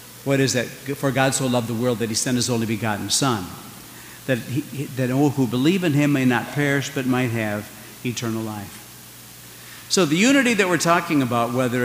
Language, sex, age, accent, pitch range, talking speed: English, male, 60-79, American, 105-135 Hz, 200 wpm